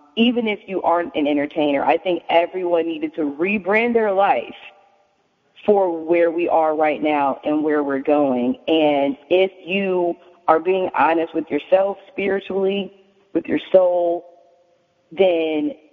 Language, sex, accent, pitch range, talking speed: English, female, American, 150-195 Hz, 140 wpm